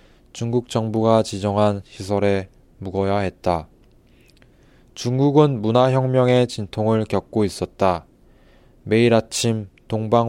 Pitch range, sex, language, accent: 100-120 Hz, male, Korean, native